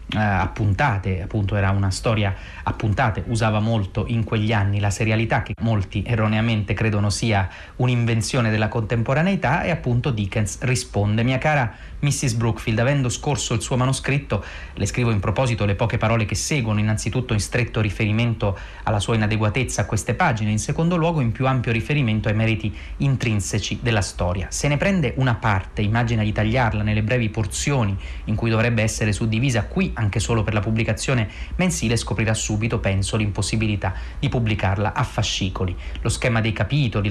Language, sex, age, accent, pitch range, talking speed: Italian, male, 30-49, native, 105-125 Hz, 165 wpm